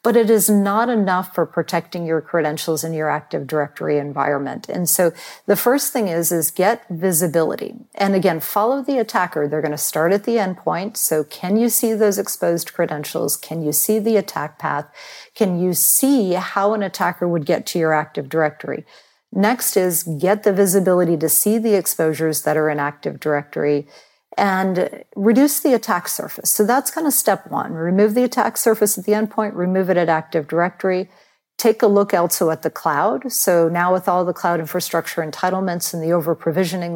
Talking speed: 185 wpm